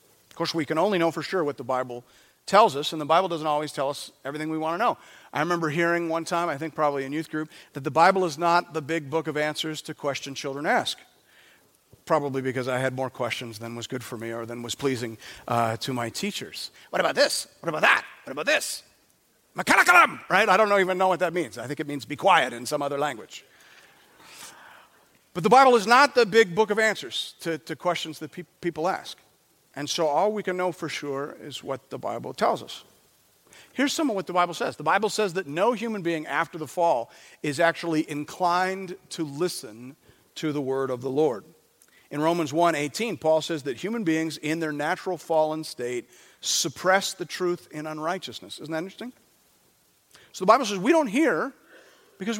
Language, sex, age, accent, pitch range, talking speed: English, male, 40-59, American, 145-185 Hz, 210 wpm